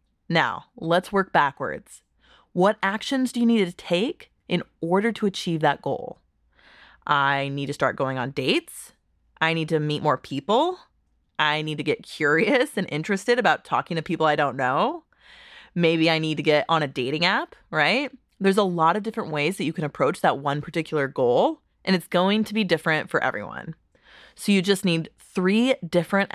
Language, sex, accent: English, female, American